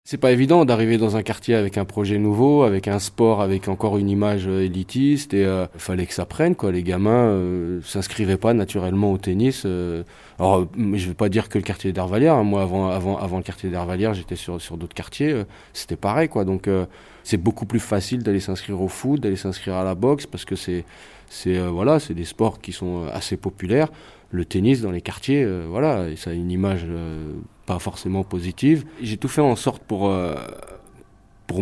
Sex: male